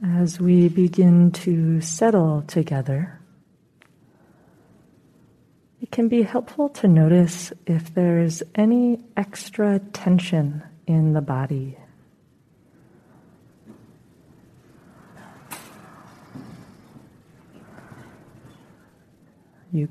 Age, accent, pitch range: 30-49, American, 150-175 Hz